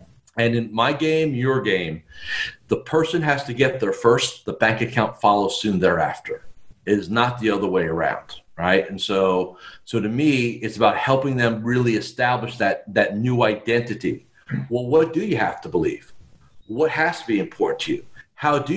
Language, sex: English, male